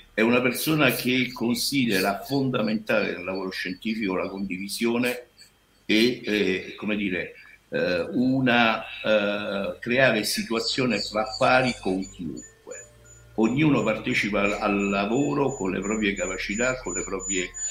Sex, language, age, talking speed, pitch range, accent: male, Italian, 60-79, 120 wpm, 100-120 Hz, native